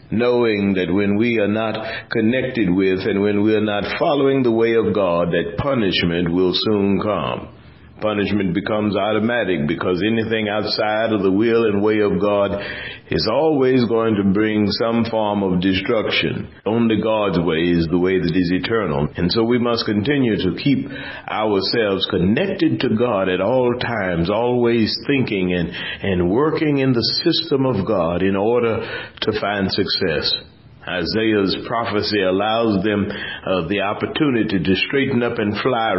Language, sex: English, male